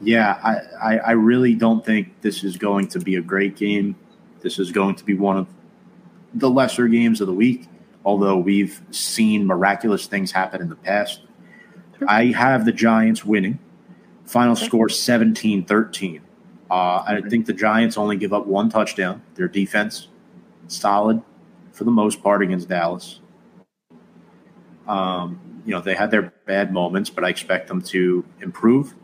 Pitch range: 100-120 Hz